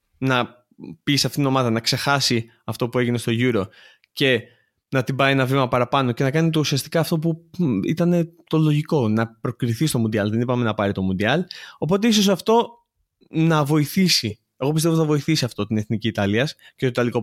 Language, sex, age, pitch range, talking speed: Greek, male, 20-39, 115-160 Hz, 195 wpm